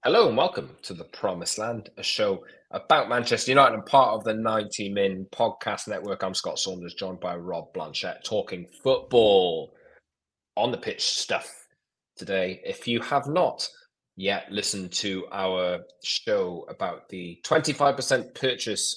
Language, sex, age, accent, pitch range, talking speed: English, male, 20-39, British, 95-155 Hz, 150 wpm